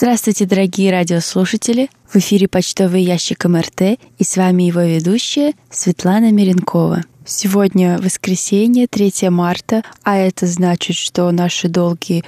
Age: 20-39